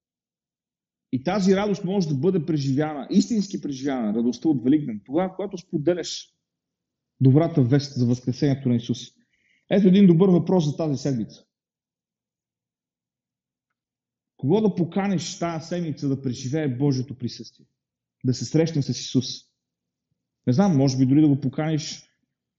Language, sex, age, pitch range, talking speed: Bulgarian, male, 40-59, 130-175 Hz, 135 wpm